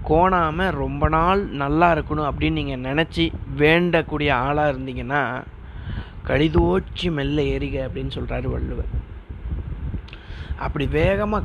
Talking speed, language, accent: 100 wpm, Tamil, native